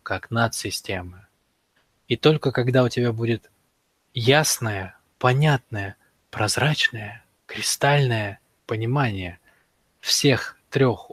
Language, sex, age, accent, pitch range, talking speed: Russian, male, 20-39, native, 105-135 Hz, 80 wpm